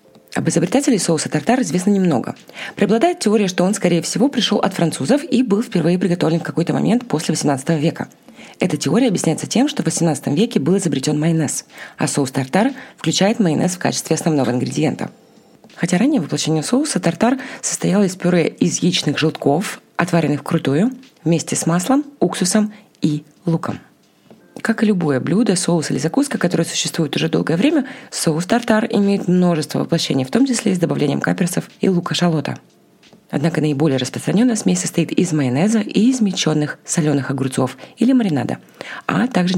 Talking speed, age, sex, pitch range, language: 160 wpm, 20-39, female, 155-220 Hz, Russian